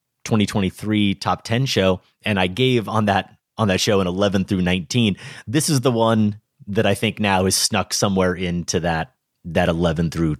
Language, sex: English, male